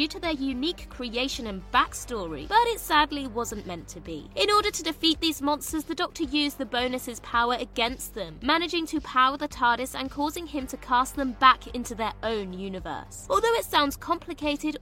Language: English